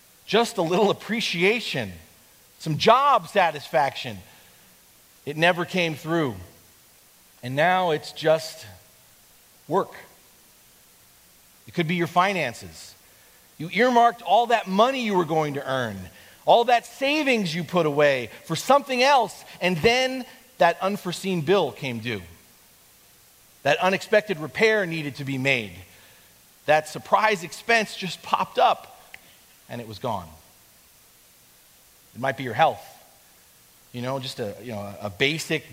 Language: English